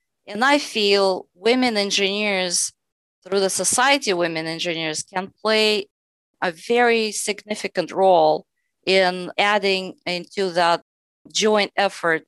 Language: English